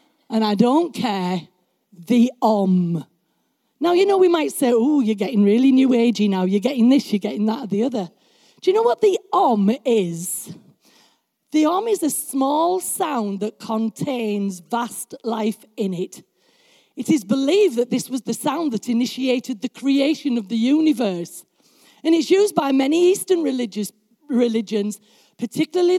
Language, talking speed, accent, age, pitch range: English, 165 wpm, British, 40-59, 210-305 Hz